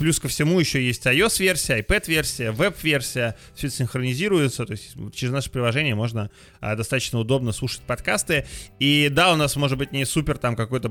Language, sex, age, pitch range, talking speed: Russian, male, 20-39, 115-145 Hz, 170 wpm